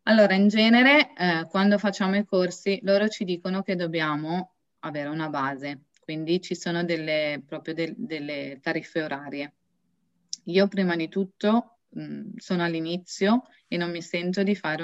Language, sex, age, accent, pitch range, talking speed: Italian, female, 20-39, native, 155-195 Hz, 140 wpm